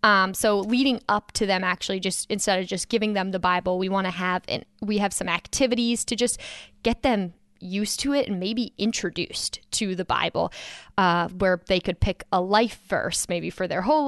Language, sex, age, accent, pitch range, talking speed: English, female, 10-29, American, 185-220 Hz, 210 wpm